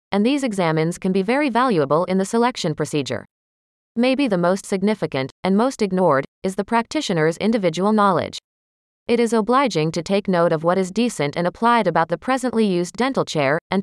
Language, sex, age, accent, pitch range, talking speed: English, female, 30-49, American, 165-230 Hz, 180 wpm